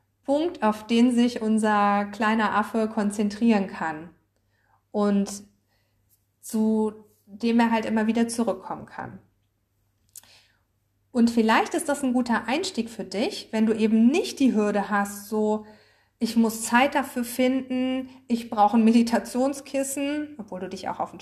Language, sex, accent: German, female, German